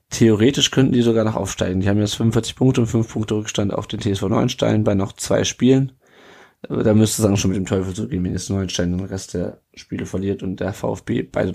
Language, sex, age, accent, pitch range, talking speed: German, male, 20-39, German, 100-115 Hz, 235 wpm